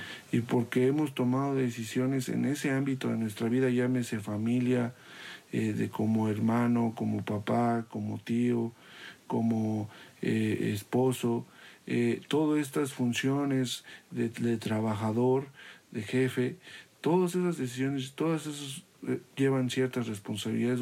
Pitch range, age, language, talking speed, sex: 115-135 Hz, 50-69, Spanish, 120 wpm, male